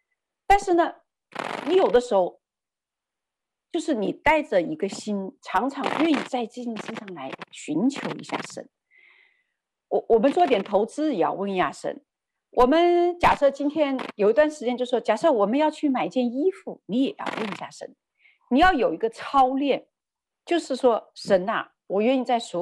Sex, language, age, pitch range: female, Chinese, 50-69, 210-320 Hz